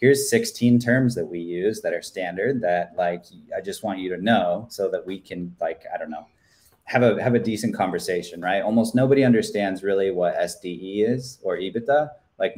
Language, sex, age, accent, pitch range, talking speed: English, male, 20-39, American, 95-130 Hz, 200 wpm